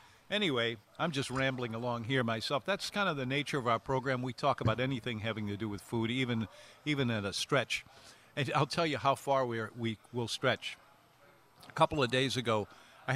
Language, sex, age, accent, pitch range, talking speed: English, male, 50-69, American, 115-145 Hz, 210 wpm